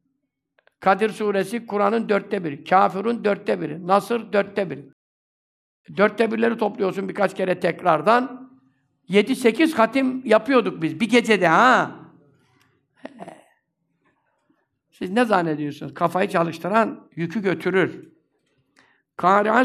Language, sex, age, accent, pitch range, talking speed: Turkish, male, 60-79, native, 170-225 Hz, 100 wpm